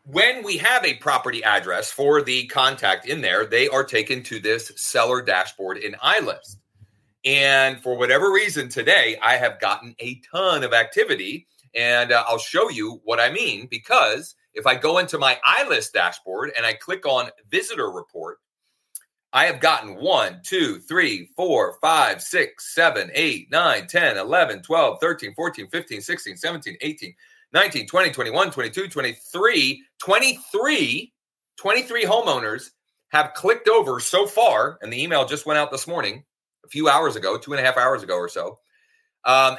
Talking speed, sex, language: 180 wpm, male, English